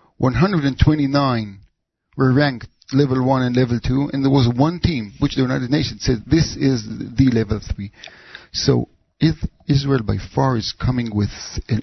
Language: English